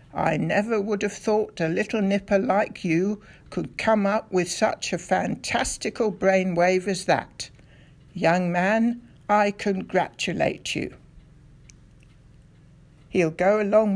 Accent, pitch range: British, 160-205 Hz